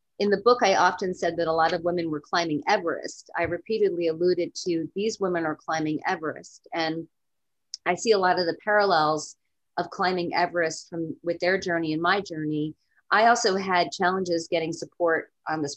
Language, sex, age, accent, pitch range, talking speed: English, female, 40-59, American, 160-185 Hz, 185 wpm